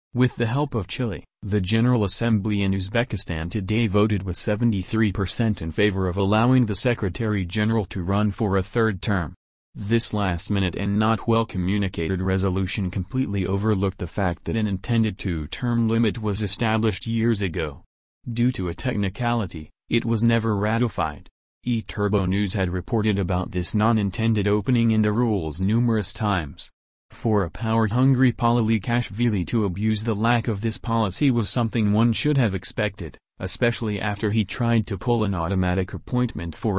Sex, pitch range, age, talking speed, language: male, 95-115 Hz, 30-49, 150 wpm, English